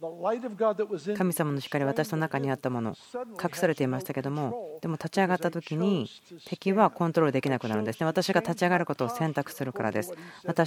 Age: 40-59